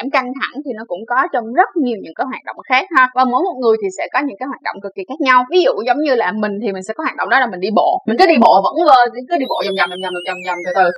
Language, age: Vietnamese, 20-39